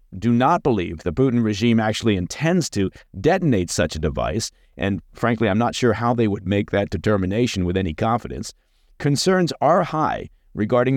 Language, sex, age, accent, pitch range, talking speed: English, male, 50-69, American, 100-125 Hz, 170 wpm